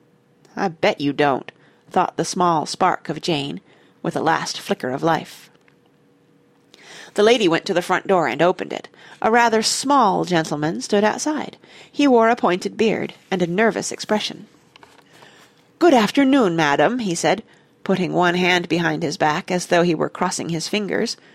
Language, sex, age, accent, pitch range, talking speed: English, female, 40-59, American, 170-250 Hz, 165 wpm